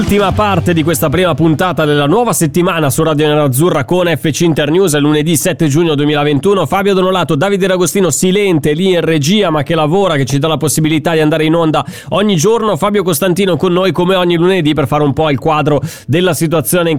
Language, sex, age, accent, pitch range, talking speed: Italian, male, 20-39, native, 130-170 Hz, 210 wpm